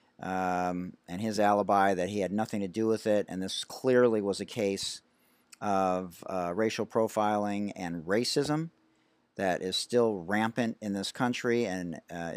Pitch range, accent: 95-115 Hz, American